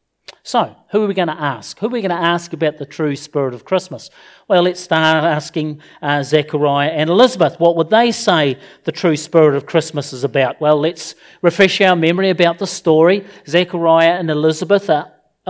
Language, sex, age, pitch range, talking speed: English, male, 40-59, 150-185 Hz, 195 wpm